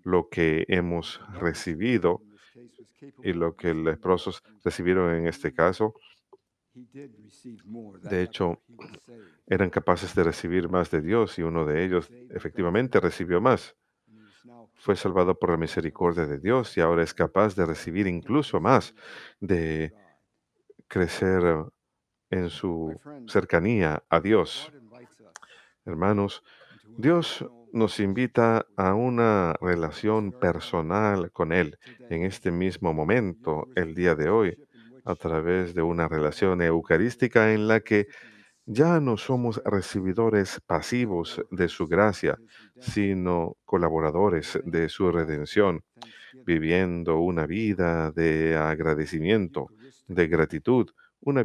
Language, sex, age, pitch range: Spanish, male, 50-69, 85-110 Hz